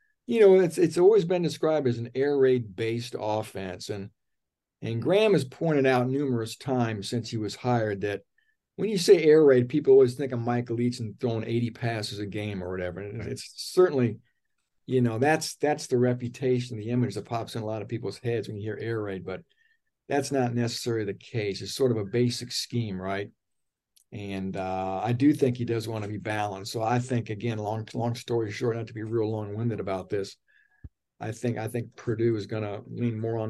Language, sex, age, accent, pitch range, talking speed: English, male, 50-69, American, 110-130 Hz, 215 wpm